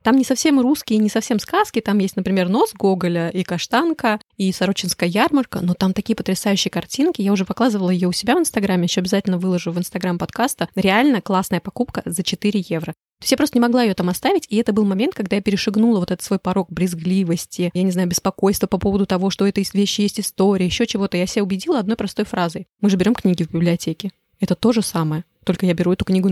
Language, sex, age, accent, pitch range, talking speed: Russian, female, 20-39, native, 190-230 Hz, 225 wpm